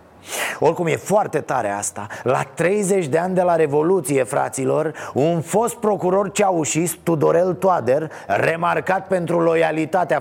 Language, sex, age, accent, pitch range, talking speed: Romanian, male, 30-49, native, 160-200 Hz, 130 wpm